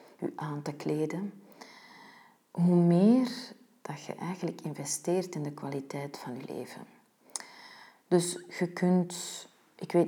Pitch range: 155-200 Hz